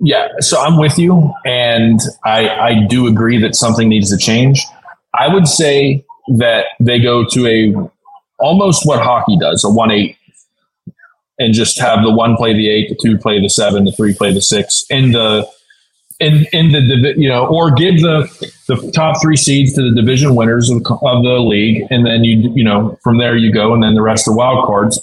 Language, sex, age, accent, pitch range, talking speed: English, male, 30-49, American, 110-150 Hz, 205 wpm